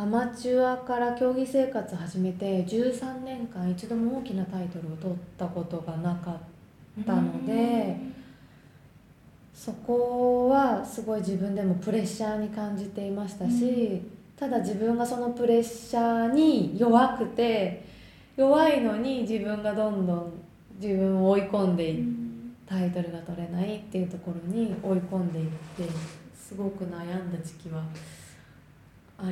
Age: 20-39